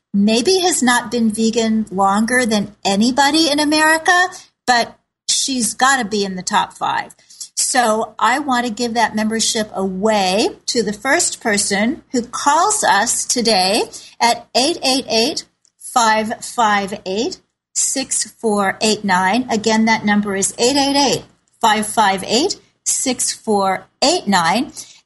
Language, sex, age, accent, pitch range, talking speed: English, female, 40-59, American, 200-245 Hz, 100 wpm